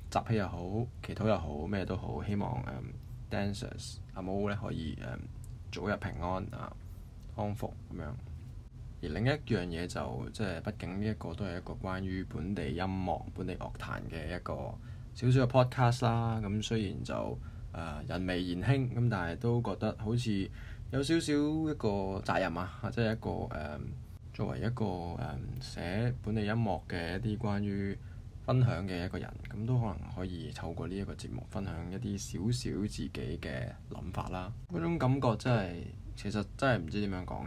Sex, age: male, 20-39